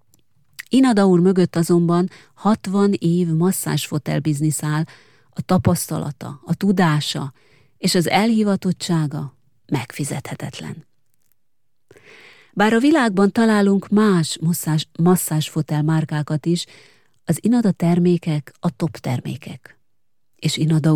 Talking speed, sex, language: 95 wpm, female, Hungarian